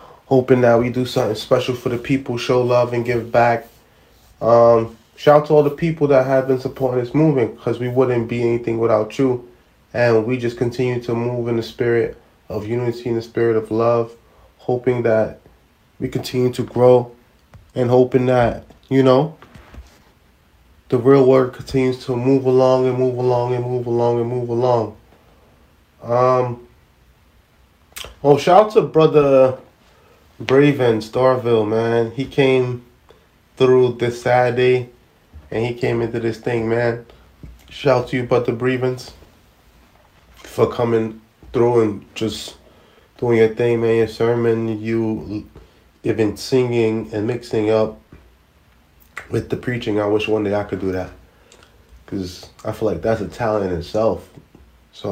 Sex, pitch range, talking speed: male, 110-125 Hz, 155 wpm